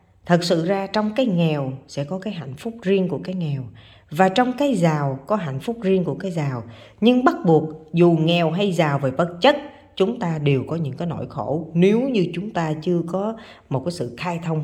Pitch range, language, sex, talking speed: 150-220 Hz, Vietnamese, female, 225 wpm